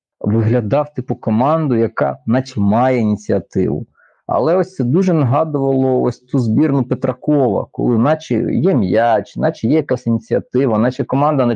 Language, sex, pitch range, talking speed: Ukrainian, male, 115-145 Hz, 140 wpm